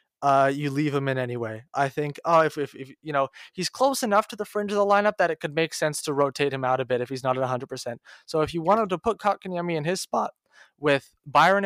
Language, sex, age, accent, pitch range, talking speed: English, male, 20-39, American, 140-175 Hz, 260 wpm